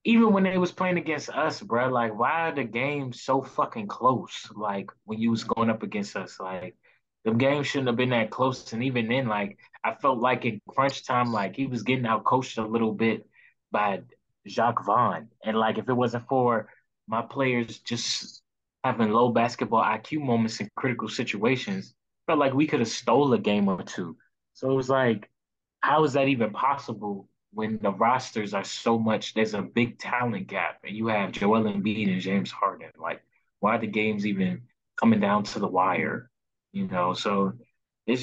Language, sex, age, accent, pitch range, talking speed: English, male, 20-39, American, 115-155 Hz, 195 wpm